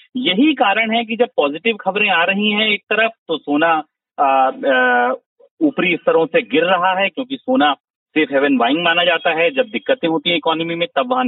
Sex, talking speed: male, 190 wpm